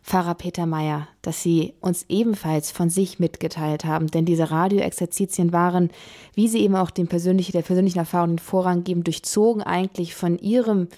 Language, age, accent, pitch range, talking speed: German, 20-39, German, 170-195 Hz, 170 wpm